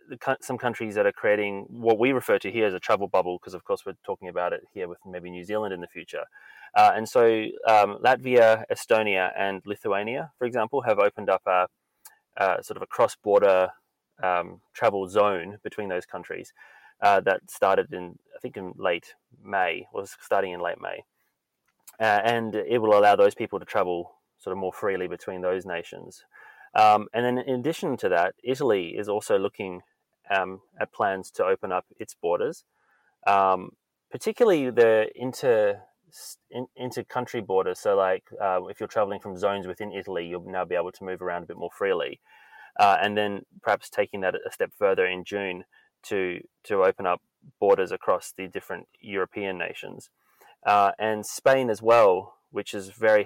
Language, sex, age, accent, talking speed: English, male, 20-39, Australian, 180 wpm